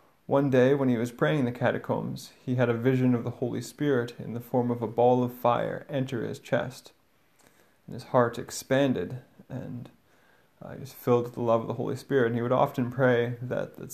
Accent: American